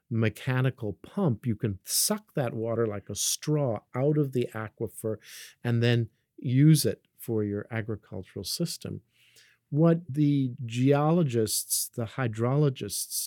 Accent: American